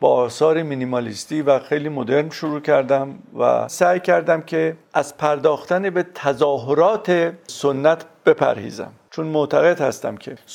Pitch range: 130-170 Hz